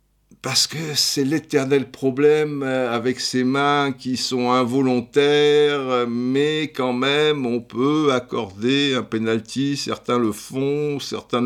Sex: male